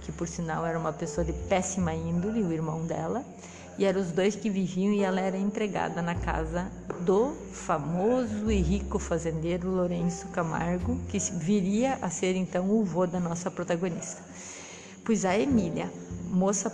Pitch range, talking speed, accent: 165-195 Hz, 160 wpm, Brazilian